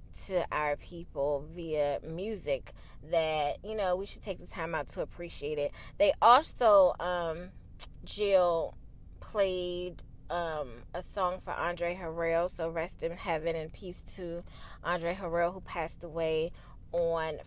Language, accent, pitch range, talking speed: English, American, 155-185 Hz, 140 wpm